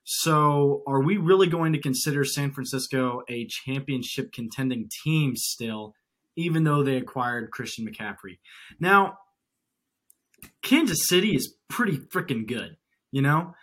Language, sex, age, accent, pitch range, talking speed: English, male, 20-39, American, 125-165 Hz, 130 wpm